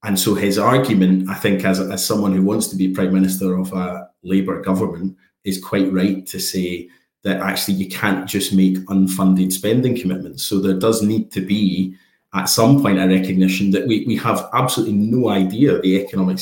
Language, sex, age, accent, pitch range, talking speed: English, male, 30-49, British, 95-100 Hz, 195 wpm